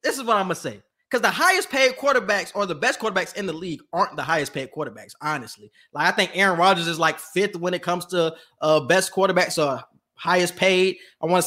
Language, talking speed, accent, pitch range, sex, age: English, 235 wpm, American, 165-250 Hz, male, 20-39